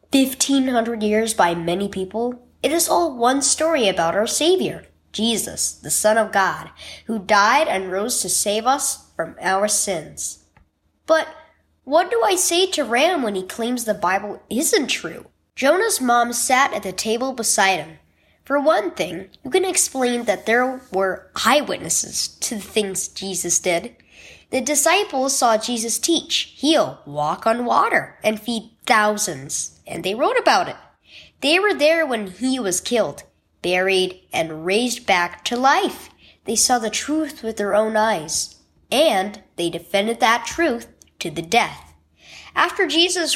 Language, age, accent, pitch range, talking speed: English, 10-29, American, 200-290 Hz, 155 wpm